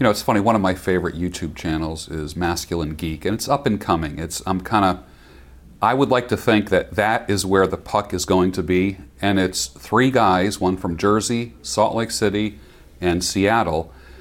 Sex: male